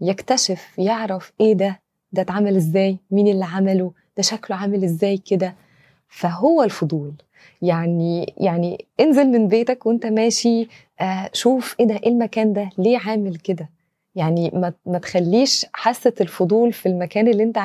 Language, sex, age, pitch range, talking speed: Arabic, female, 20-39, 180-225 Hz, 140 wpm